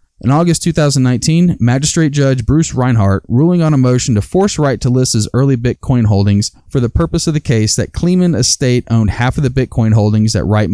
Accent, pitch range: American, 105-140 Hz